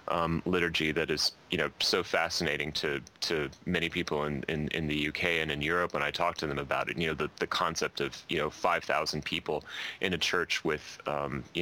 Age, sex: 30-49, male